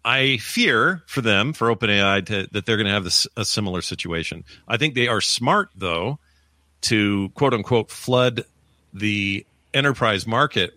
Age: 40-59